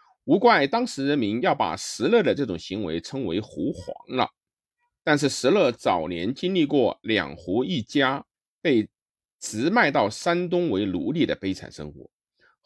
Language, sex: Chinese, male